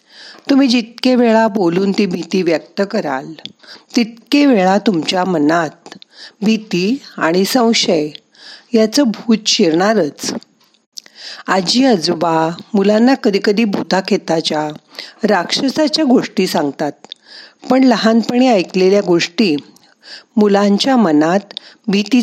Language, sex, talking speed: Marathi, female, 75 wpm